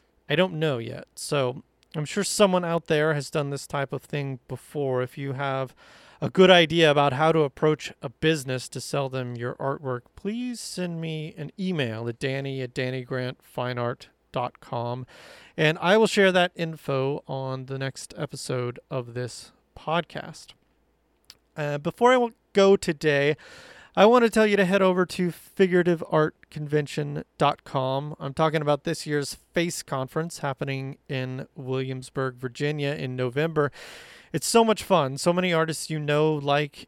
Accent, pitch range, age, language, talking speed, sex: American, 135-175 Hz, 30-49, English, 155 wpm, male